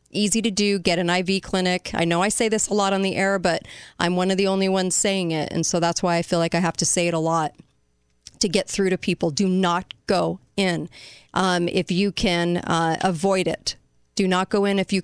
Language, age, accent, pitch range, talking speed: English, 40-59, American, 165-190 Hz, 245 wpm